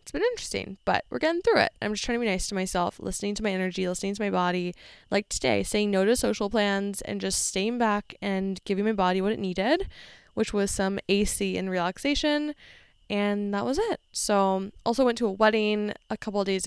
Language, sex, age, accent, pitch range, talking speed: English, female, 20-39, American, 190-225 Hz, 225 wpm